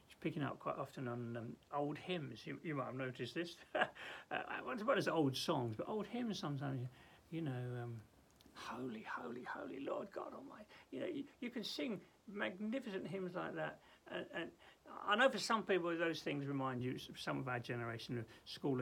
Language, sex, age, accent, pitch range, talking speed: English, male, 60-79, British, 125-165 Hz, 190 wpm